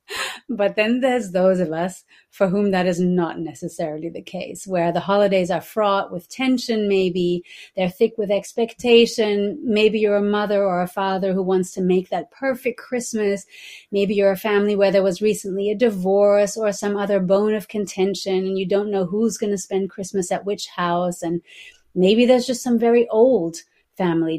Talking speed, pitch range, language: 185 wpm, 180-225 Hz, English